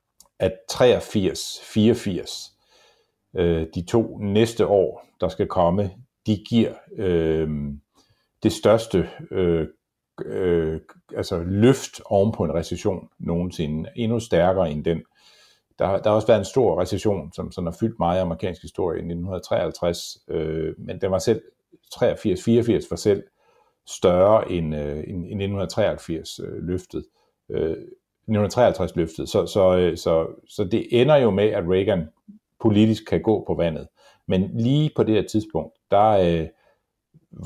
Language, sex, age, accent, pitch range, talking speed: Danish, male, 50-69, native, 85-110 Hz, 130 wpm